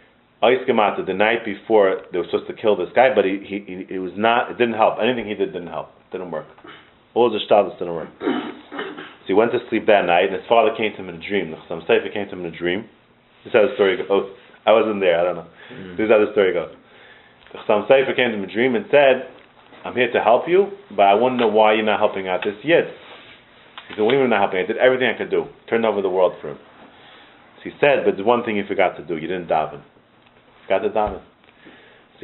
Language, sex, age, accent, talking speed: English, male, 30-49, American, 250 wpm